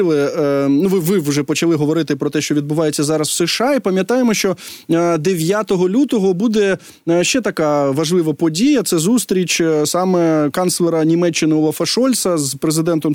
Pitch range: 155-205 Hz